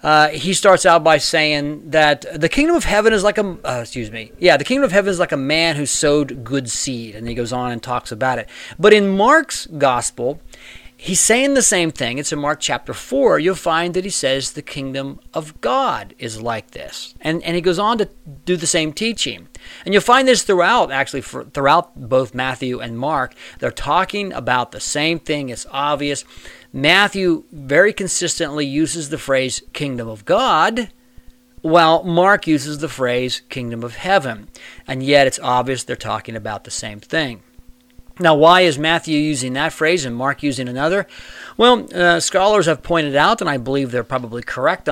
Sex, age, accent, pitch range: male, 40-59, American, 125-185 Hz